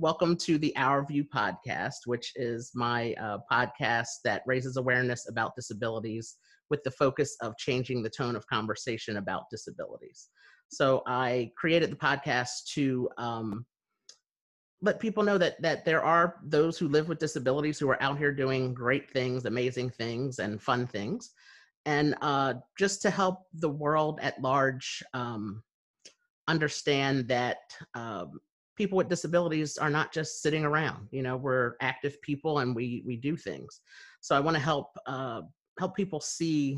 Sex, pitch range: male, 125-155 Hz